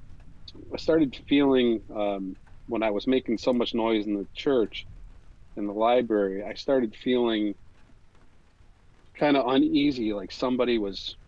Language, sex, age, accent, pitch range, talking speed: English, male, 40-59, American, 95-115 Hz, 140 wpm